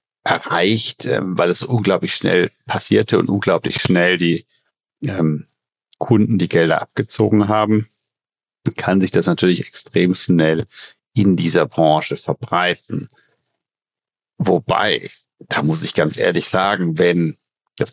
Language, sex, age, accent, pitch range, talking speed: German, male, 60-79, German, 85-105 Hz, 115 wpm